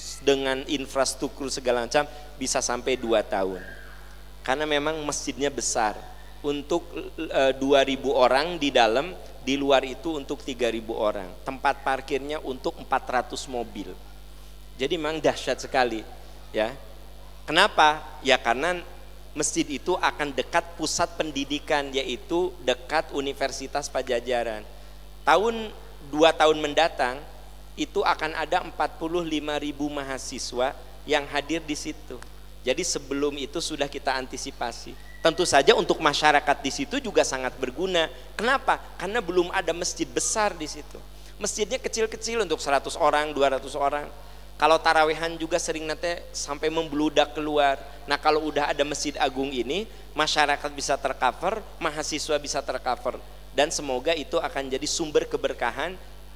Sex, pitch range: male, 135-165 Hz